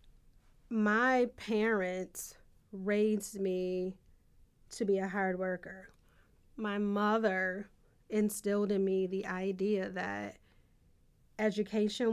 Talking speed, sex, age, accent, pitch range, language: 90 wpm, female, 30-49, American, 190-215 Hz, English